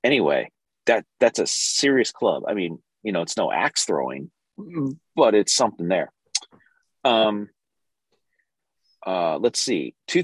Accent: American